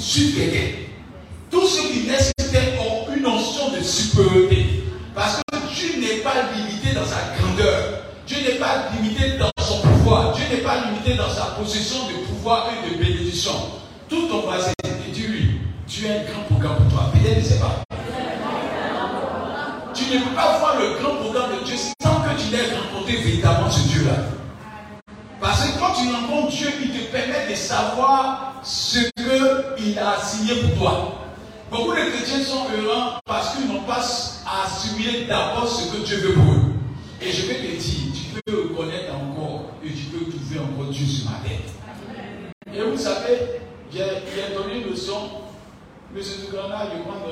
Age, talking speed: 50-69, 175 wpm